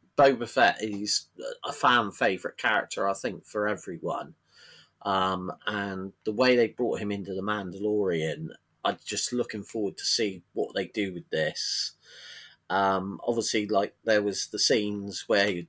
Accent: British